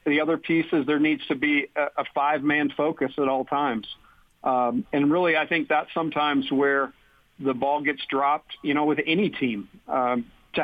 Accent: American